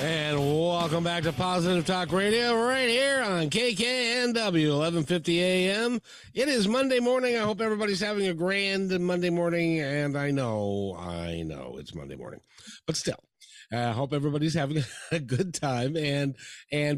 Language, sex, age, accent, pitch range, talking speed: English, male, 50-69, American, 120-180 Hz, 160 wpm